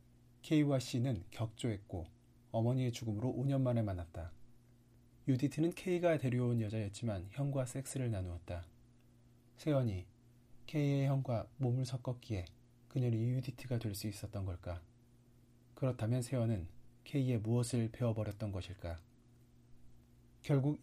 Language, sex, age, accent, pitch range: Korean, male, 40-59, native, 110-130 Hz